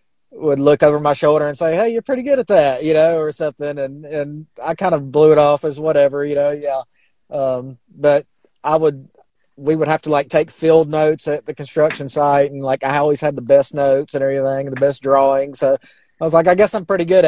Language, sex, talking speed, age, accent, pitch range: English, male, 240 wpm, 30-49, American, 130-150 Hz